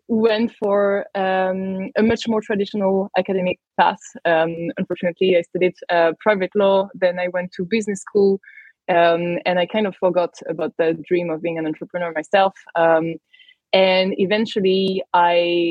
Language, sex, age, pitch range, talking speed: English, female, 20-39, 170-200 Hz, 155 wpm